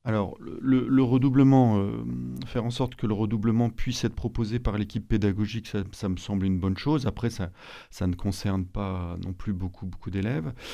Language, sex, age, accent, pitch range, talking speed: French, male, 40-59, French, 95-115 Hz, 195 wpm